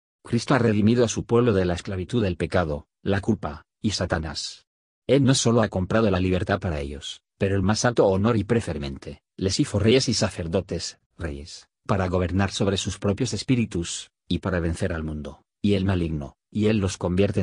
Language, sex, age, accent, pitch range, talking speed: Spanish, male, 40-59, Spanish, 90-110 Hz, 190 wpm